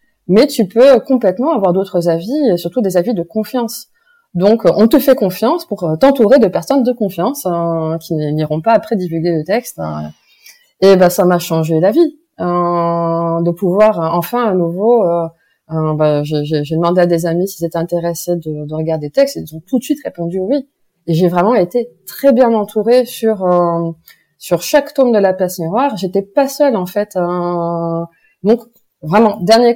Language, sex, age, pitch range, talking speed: French, female, 20-39, 165-225 Hz, 195 wpm